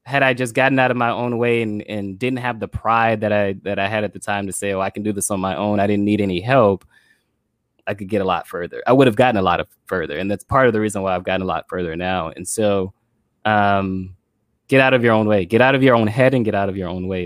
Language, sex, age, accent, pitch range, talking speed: English, male, 20-39, American, 100-115 Hz, 305 wpm